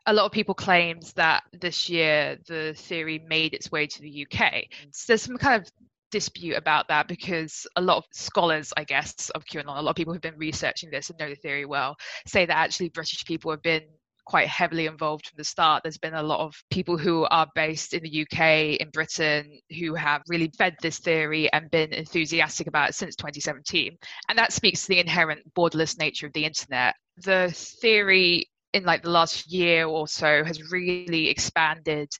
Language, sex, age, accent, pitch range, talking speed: English, female, 20-39, British, 155-175 Hz, 205 wpm